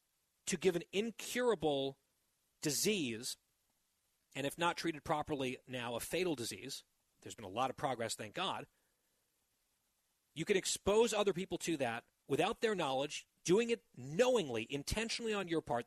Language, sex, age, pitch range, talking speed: English, male, 40-59, 140-195 Hz, 150 wpm